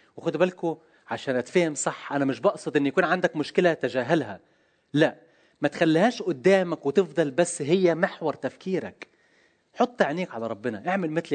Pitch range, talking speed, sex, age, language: 135-180 Hz, 150 wpm, male, 30-49, Arabic